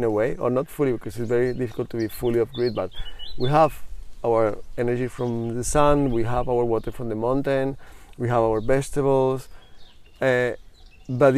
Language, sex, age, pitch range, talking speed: English, male, 30-49, 115-145 Hz, 185 wpm